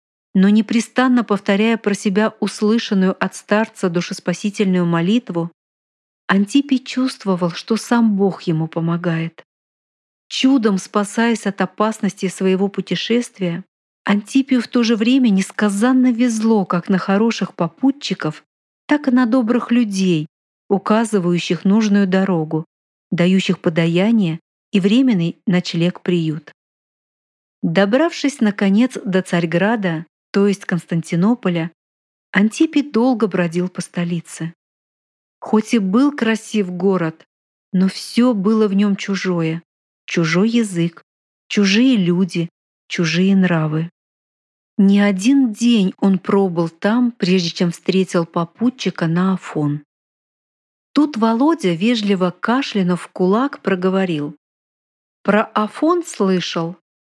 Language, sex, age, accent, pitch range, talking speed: Russian, female, 40-59, native, 175-225 Hz, 105 wpm